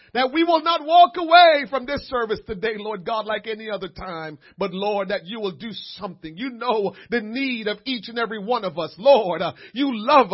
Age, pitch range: 40-59, 210-290 Hz